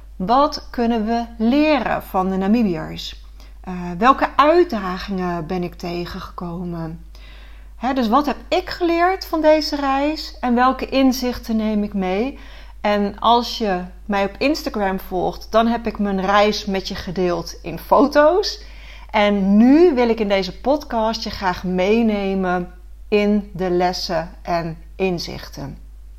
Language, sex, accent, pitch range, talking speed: Dutch, female, Dutch, 190-260 Hz, 135 wpm